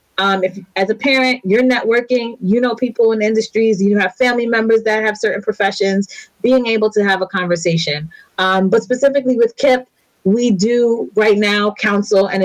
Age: 30-49